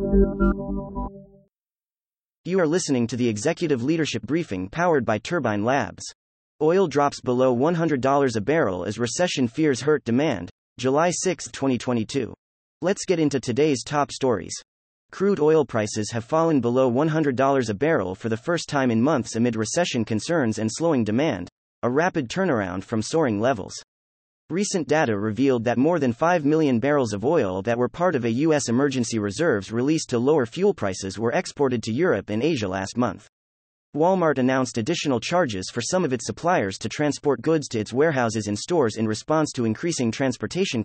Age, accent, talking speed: 30-49, American, 165 wpm